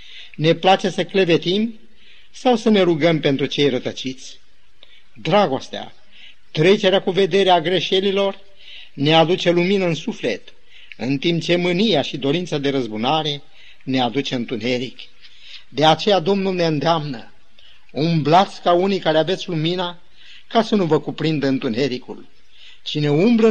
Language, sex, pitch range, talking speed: Romanian, male, 140-195 Hz, 130 wpm